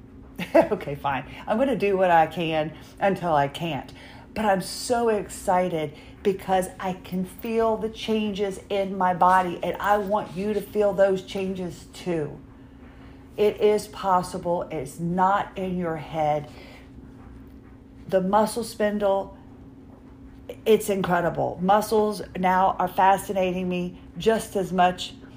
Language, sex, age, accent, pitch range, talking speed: English, female, 40-59, American, 150-200 Hz, 130 wpm